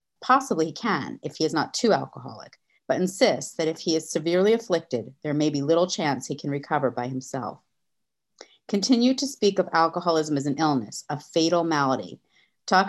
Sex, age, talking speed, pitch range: female, 40-59, 180 wpm, 150-195 Hz